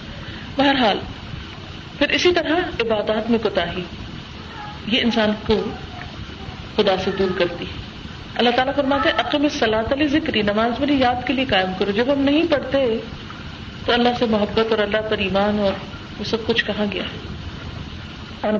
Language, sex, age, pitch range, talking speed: Urdu, female, 40-59, 195-245 Hz, 150 wpm